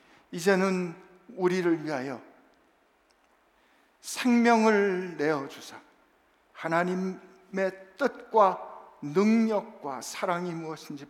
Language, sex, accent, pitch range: Korean, male, native, 140-195 Hz